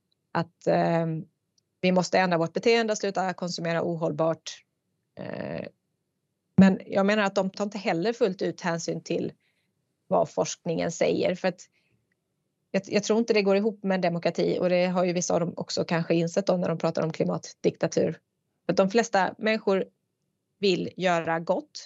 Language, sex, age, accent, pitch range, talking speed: Swedish, female, 20-39, native, 170-205 Hz, 165 wpm